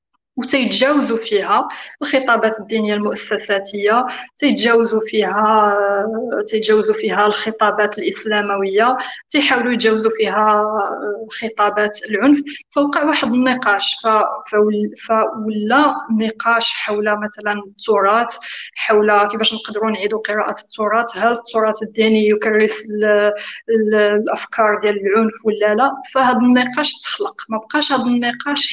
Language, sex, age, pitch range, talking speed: Arabic, female, 20-39, 215-255 Hz, 100 wpm